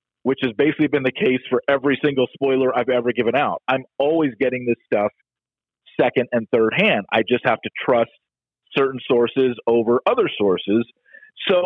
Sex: male